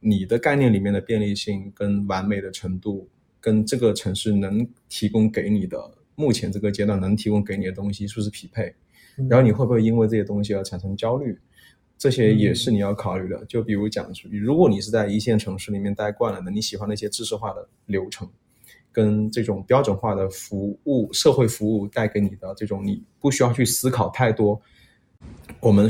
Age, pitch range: 20-39, 100-115 Hz